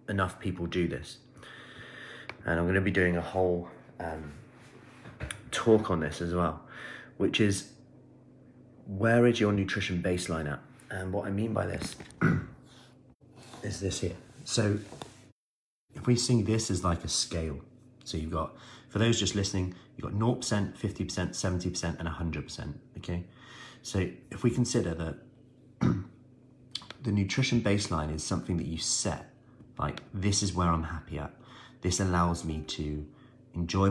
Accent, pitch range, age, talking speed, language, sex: British, 85-115 Hz, 30-49, 150 wpm, English, male